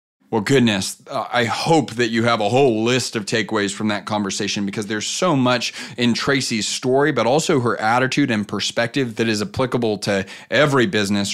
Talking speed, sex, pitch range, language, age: 185 wpm, male, 105-130 Hz, English, 30-49